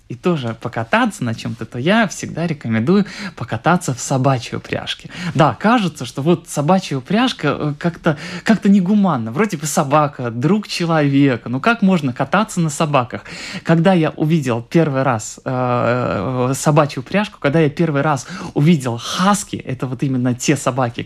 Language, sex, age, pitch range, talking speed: Russian, male, 20-39, 130-175 Hz, 145 wpm